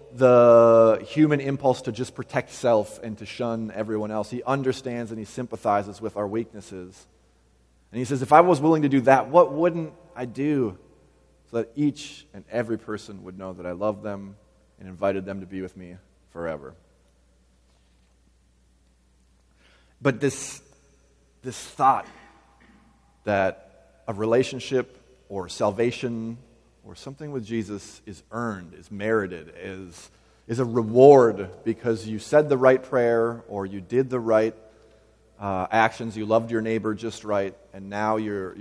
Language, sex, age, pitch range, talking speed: English, male, 30-49, 95-125 Hz, 150 wpm